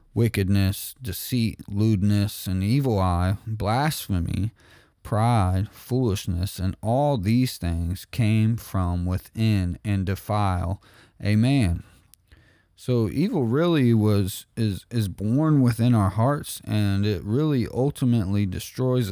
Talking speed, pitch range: 110 wpm, 95-120 Hz